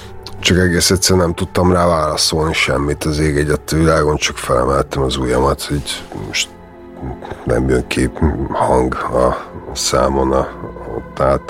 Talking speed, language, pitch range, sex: 130 wpm, Hungarian, 70-85 Hz, male